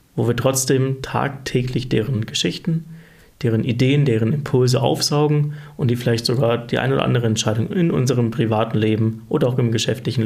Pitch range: 120-145 Hz